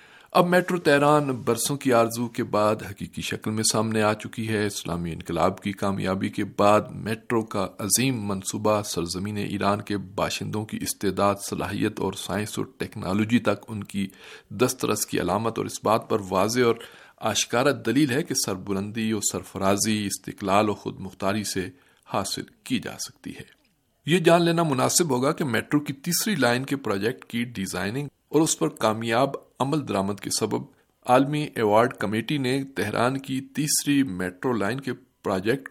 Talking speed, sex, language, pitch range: 165 wpm, male, Urdu, 100-135 Hz